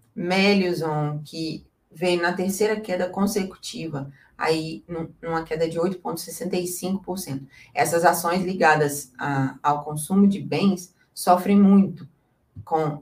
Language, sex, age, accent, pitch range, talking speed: Portuguese, female, 30-49, Brazilian, 155-190 Hz, 100 wpm